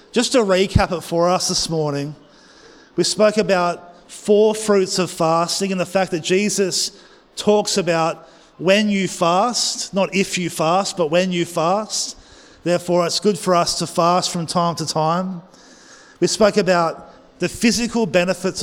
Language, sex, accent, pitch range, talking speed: English, male, Australian, 170-200 Hz, 160 wpm